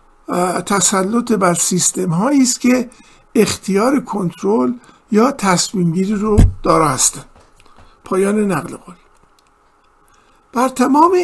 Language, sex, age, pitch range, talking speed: Persian, male, 50-69, 180-240 Hz, 100 wpm